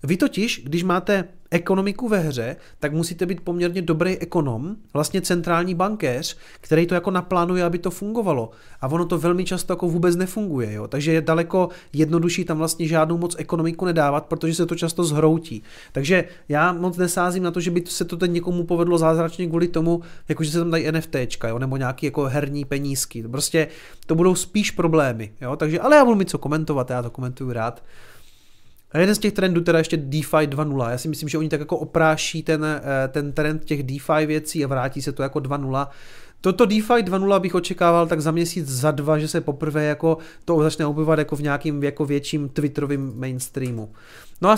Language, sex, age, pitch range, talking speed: Czech, male, 30-49, 145-175 Hz, 195 wpm